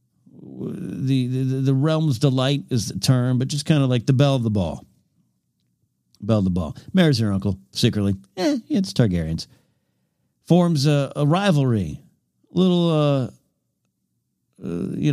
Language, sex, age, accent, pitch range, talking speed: English, male, 50-69, American, 100-140 Hz, 145 wpm